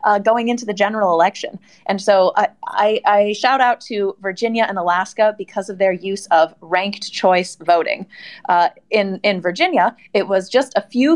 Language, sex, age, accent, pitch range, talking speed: English, female, 20-39, American, 185-225 Hz, 185 wpm